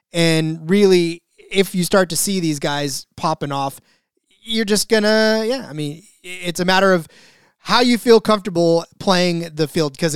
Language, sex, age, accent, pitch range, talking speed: English, male, 20-39, American, 160-215 Hz, 175 wpm